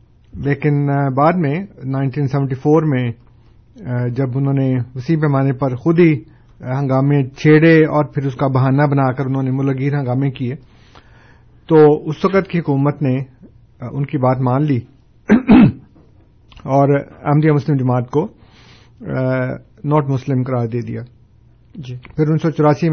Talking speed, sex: 125 wpm, male